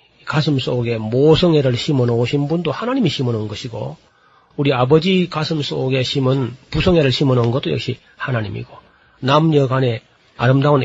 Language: Korean